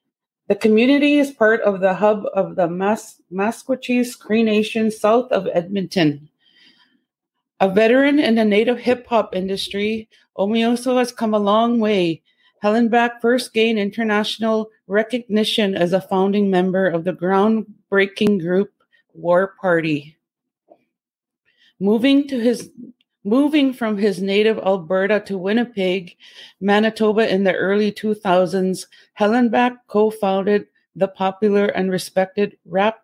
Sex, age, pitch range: female, 30-49, 190-220 Hz